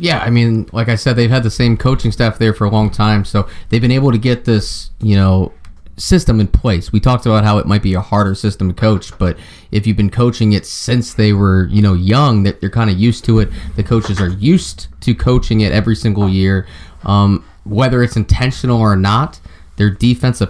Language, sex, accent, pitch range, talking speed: English, male, American, 95-120 Hz, 230 wpm